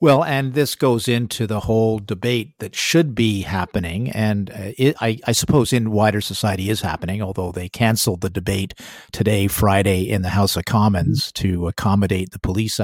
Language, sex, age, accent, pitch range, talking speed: English, male, 50-69, American, 100-125 Hz, 180 wpm